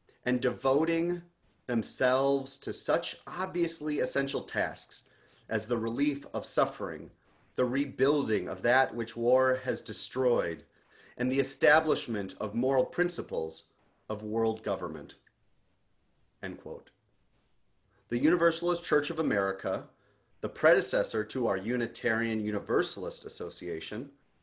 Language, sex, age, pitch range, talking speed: English, male, 30-49, 110-145 Hz, 110 wpm